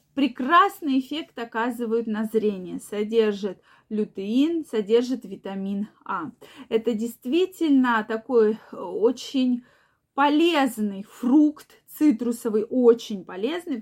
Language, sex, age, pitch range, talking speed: Russian, female, 20-39, 220-275 Hz, 85 wpm